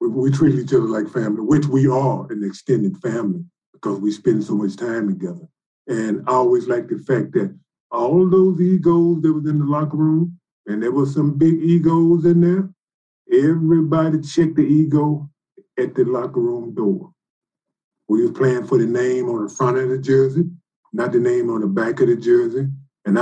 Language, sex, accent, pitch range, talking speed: English, male, American, 135-170 Hz, 190 wpm